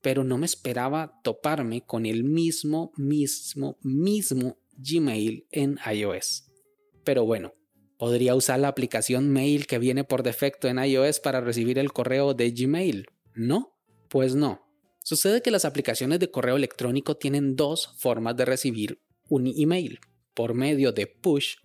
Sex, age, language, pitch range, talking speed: male, 30-49, Spanish, 125-155 Hz, 145 wpm